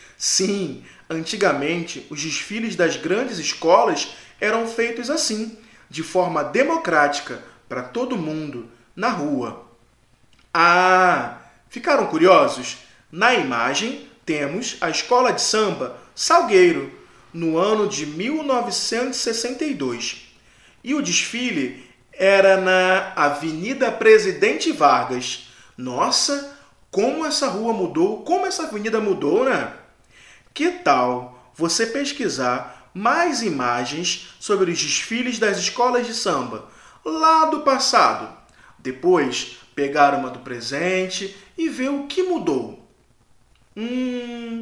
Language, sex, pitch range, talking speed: Portuguese, male, 155-255 Hz, 105 wpm